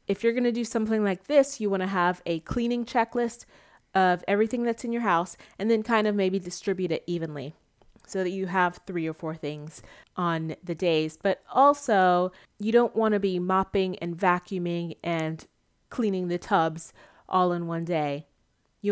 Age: 30-49